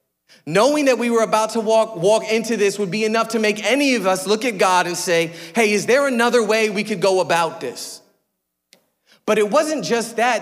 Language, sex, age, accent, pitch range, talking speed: English, male, 30-49, American, 180-235 Hz, 220 wpm